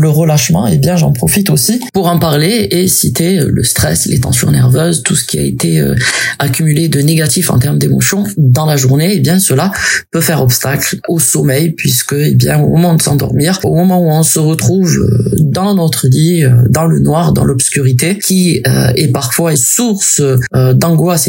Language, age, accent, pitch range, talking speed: French, 20-39, French, 130-170 Hz, 190 wpm